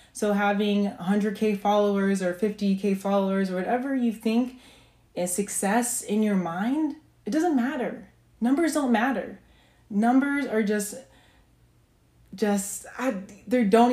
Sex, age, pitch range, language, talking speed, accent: female, 20-39, 180-220 Hz, English, 125 wpm, American